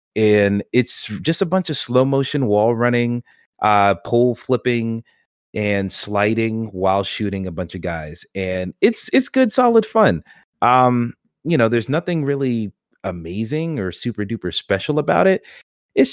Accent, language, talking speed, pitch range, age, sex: American, English, 155 wpm, 95-135 Hz, 30-49, male